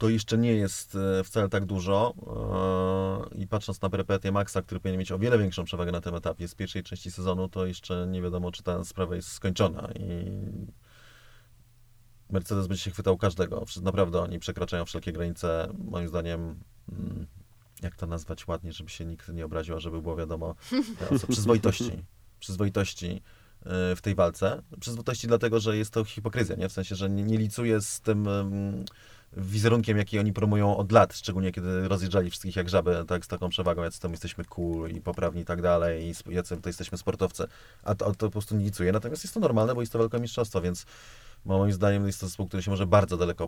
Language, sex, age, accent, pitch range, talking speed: Polish, male, 30-49, native, 90-105 Hz, 185 wpm